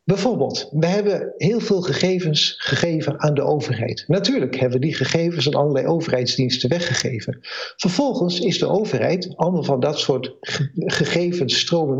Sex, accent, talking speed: male, Dutch, 140 wpm